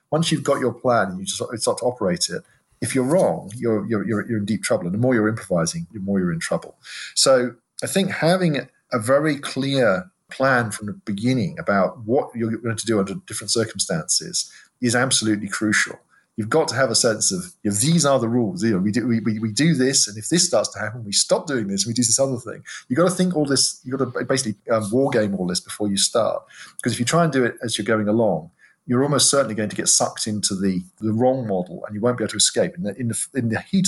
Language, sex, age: English, male, 40-59